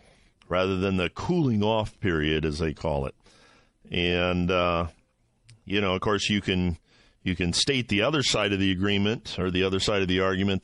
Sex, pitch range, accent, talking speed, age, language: male, 90-105 Hz, American, 185 wpm, 50-69, English